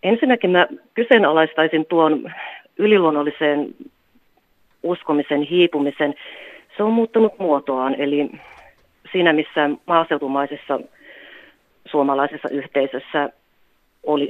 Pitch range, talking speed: 140-175 Hz, 75 wpm